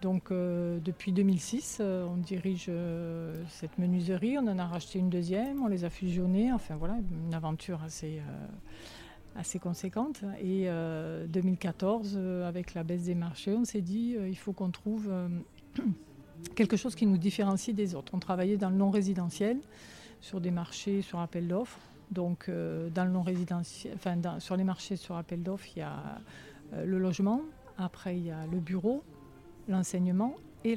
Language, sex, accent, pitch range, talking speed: French, female, French, 175-205 Hz, 175 wpm